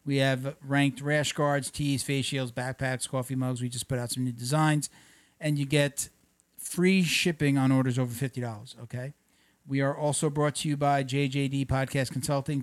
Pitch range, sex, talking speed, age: 130-150 Hz, male, 180 wpm, 50-69